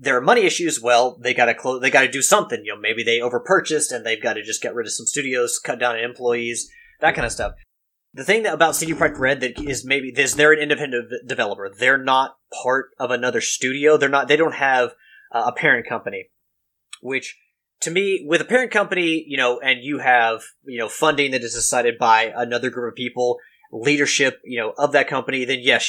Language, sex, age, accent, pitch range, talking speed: English, male, 30-49, American, 125-165 Hz, 225 wpm